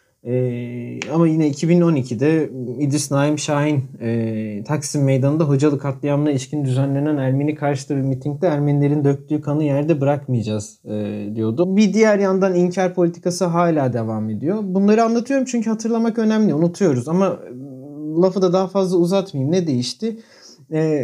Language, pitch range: Turkish, 140-180 Hz